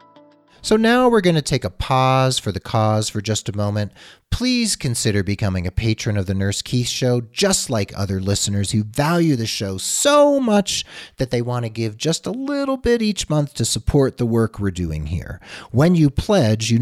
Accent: American